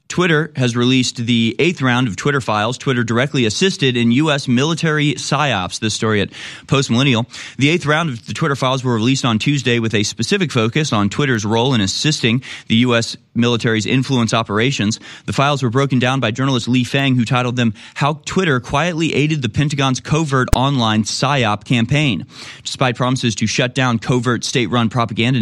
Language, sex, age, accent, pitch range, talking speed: English, male, 30-49, American, 110-140 Hz, 180 wpm